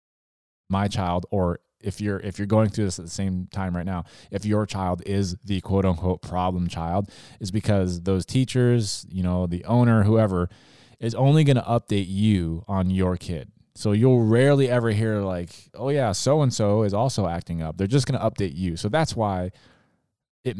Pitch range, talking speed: 90-110 Hz, 190 wpm